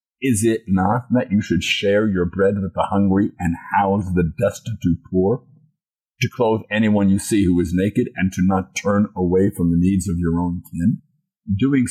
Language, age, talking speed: English, 50-69, 190 wpm